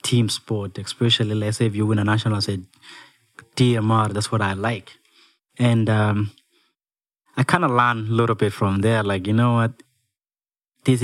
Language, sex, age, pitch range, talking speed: English, male, 20-39, 100-125 Hz, 180 wpm